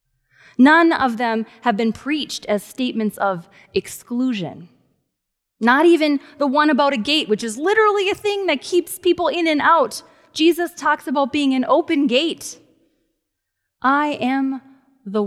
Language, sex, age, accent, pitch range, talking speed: English, female, 20-39, American, 190-270 Hz, 150 wpm